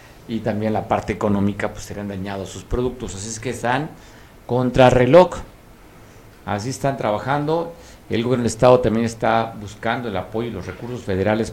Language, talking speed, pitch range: Spanish, 165 wpm, 105-130 Hz